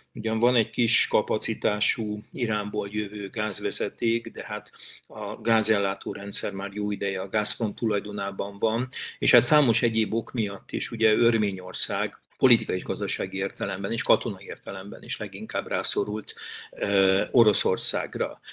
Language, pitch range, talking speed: Hungarian, 105-120 Hz, 130 wpm